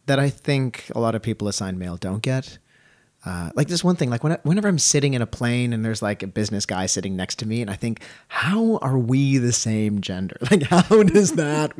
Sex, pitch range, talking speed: male, 100-135 Hz, 235 wpm